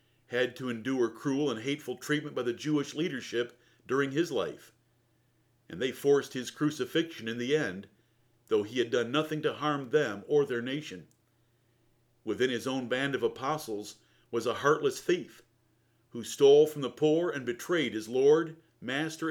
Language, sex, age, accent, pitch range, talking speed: English, male, 50-69, American, 115-150 Hz, 165 wpm